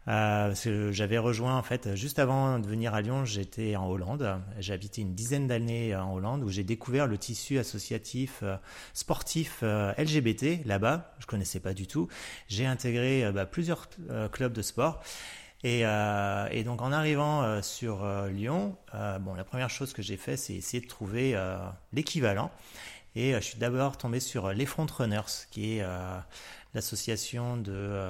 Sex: male